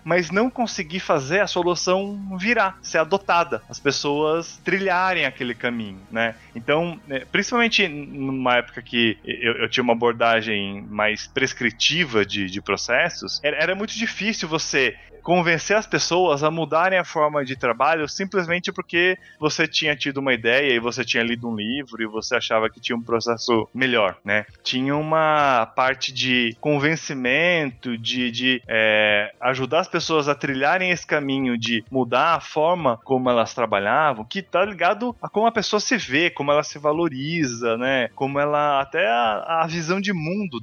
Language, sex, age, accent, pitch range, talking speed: Portuguese, male, 20-39, Brazilian, 120-160 Hz, 160 wpm